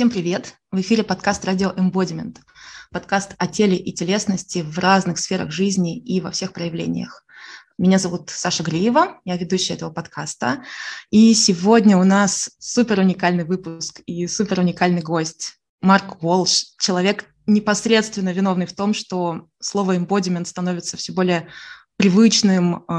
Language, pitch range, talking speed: Russian, 175-200 Hz, 140 wpm